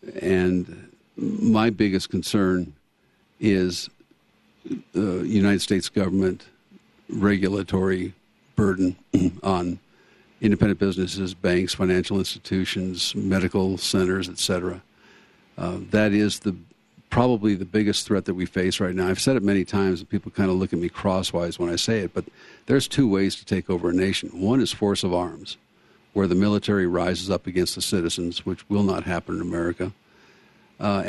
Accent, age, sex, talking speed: American, 50-69, male, 150 wpm